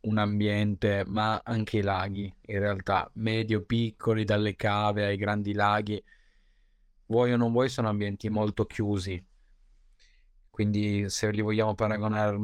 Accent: native